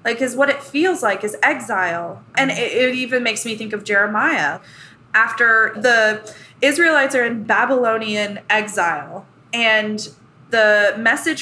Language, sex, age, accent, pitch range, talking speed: English, female, 20-39, American, 210-280 Hz, 140 wpm